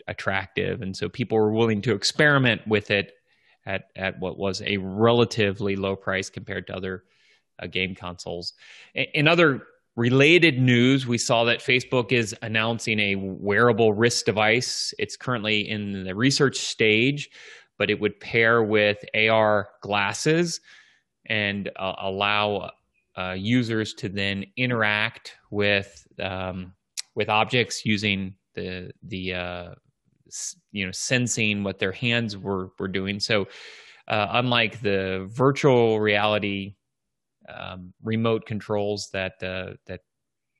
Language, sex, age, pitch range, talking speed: English, male, 30-49, 100-125 Hz, 130 wpm